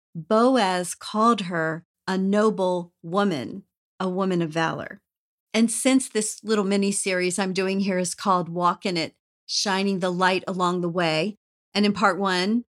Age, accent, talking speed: 40-59, American, 155 wpm